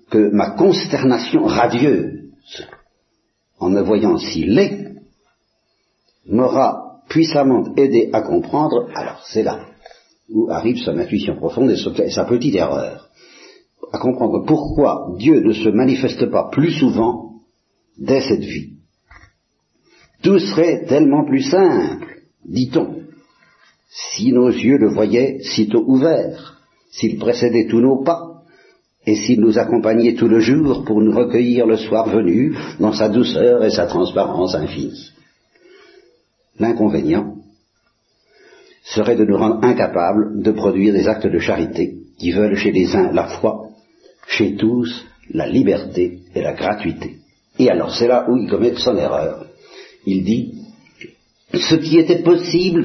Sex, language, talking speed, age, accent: male, Italian, 135 wpm, 60-79, French